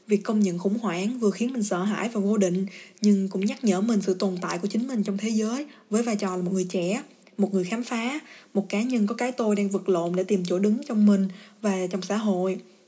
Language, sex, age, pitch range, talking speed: Vietnamese, female, 20-39, 190-230 Hz, 265 wpm